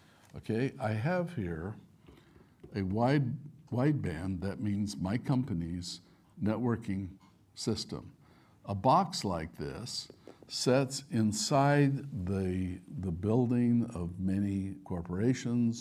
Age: 60-79